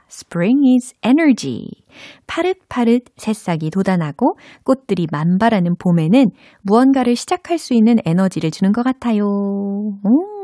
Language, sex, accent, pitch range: Korean, female, native, 170-265 Hz